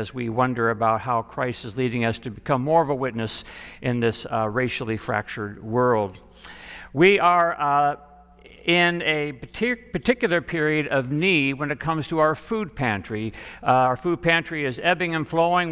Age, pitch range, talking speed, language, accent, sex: 60-79, 130-165 Hz, 170 wpm, English, American, male